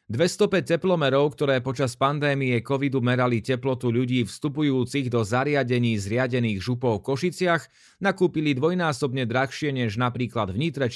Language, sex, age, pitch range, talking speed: Slovak, male, 30-49, 115-145 Hz, 125 wpm